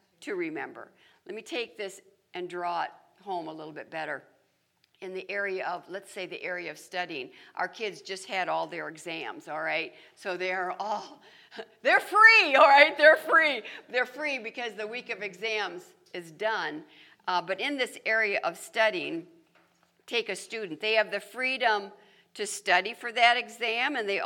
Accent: American